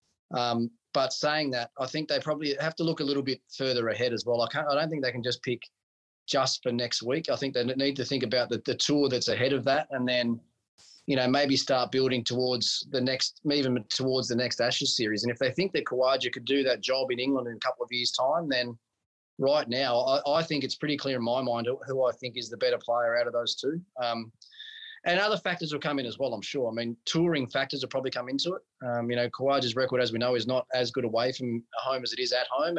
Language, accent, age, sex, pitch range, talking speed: English, Australian, 20-39, male, 120-135 Hz, 260 wpm